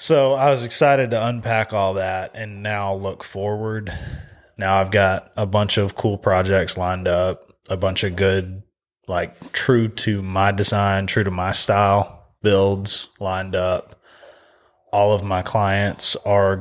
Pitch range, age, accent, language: 95-105 Hz, 20-39, American, English